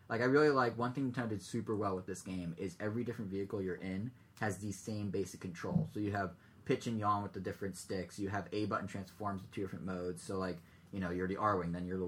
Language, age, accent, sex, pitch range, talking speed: English, 20-39, American, male, 95-130 Hz, 275 wpm